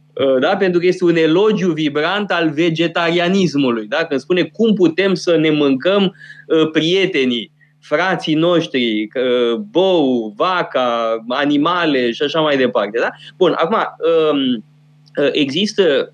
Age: 20-39